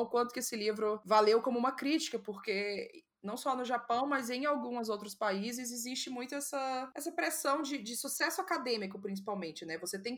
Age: 20-39